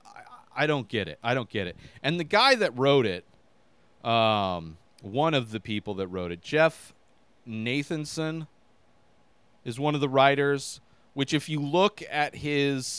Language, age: English, 30-49